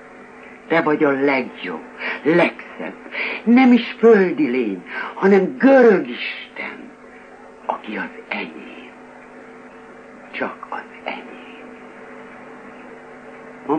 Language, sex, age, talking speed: Hungarian, male, 60-79, 85 wpm